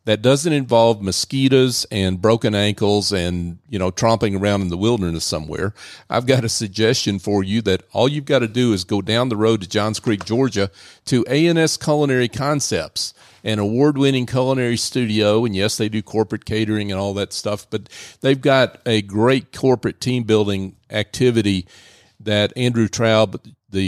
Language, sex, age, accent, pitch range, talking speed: English, male, 40-59, American, 100-125 Hz, 170 wpm